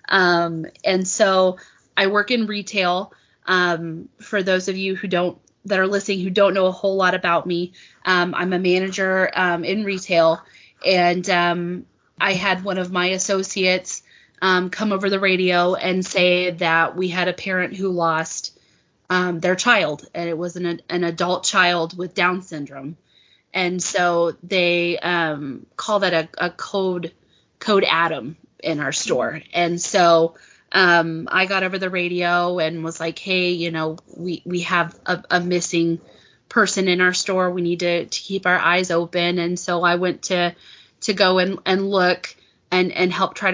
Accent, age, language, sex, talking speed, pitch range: American, 20-39, English, female, 175 wpm, 175-190 Hz